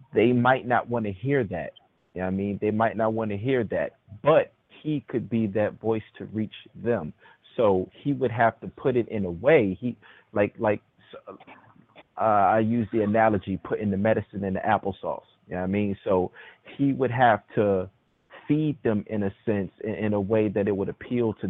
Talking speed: 210 wpm